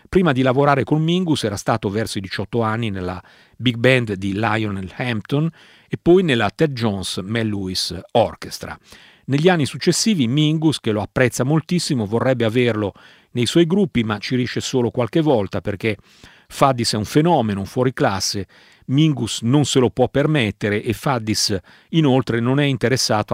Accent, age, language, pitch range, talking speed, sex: native, 40-59, Italian, 105-150 Hz, 160 wpm, male